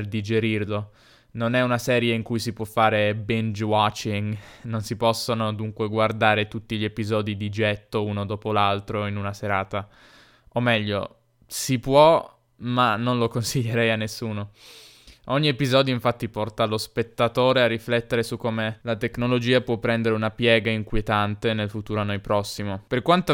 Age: 10-29